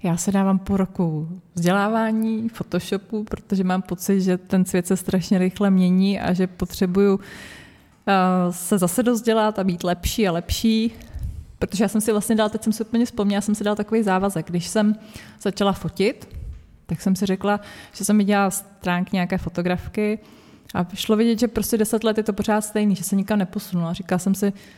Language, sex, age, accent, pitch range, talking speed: Czech, female, 20-39, native, 185-215 Hz, 185 wpm